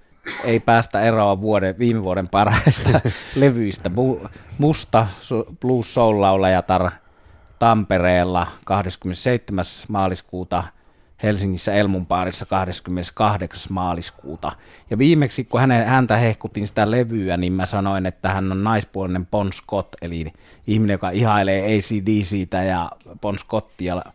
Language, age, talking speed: Finnish, 30-49, 110 wpm